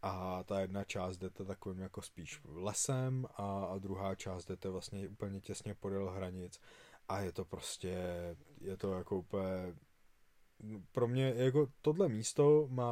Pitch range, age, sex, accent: 95-110 Hz, 20-39, male, native